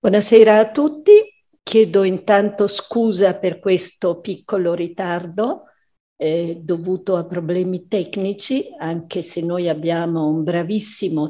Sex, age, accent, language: female, 50-69, native, Italian